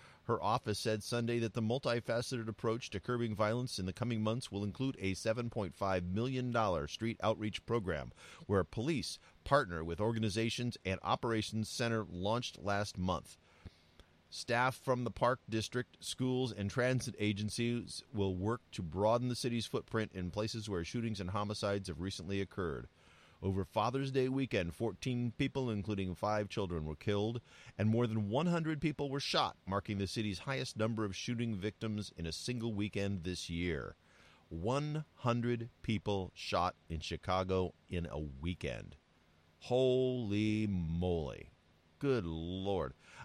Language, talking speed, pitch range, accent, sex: English, 145 wpm, 95-120 Hz, American, male